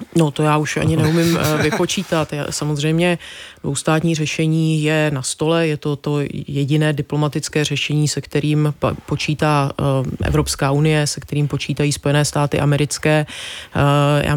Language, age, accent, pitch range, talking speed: Czech, 30-49, native, 150-160 Hz, 130 wpm